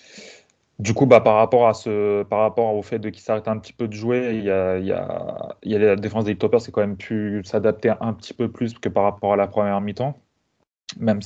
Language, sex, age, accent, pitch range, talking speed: French, male, 20-39, French, 100-115 Hz, 260 wpm